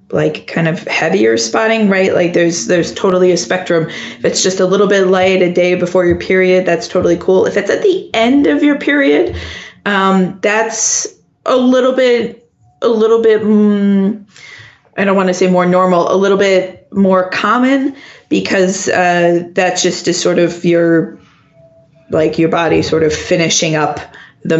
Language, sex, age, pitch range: English, female, 20-39, 165-210 Hz